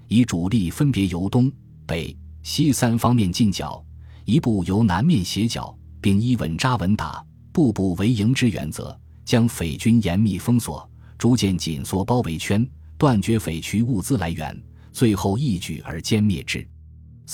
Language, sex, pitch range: Chinese, male, 85-115 Hz